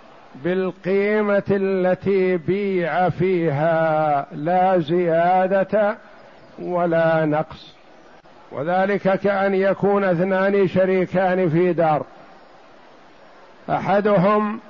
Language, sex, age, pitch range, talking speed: Arabic, male, 50-69, 180-205 Hz, 65 wpm